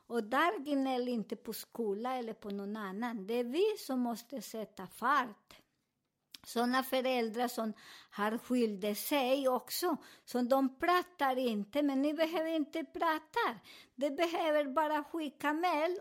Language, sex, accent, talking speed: Swedish, male, American, 140 wpm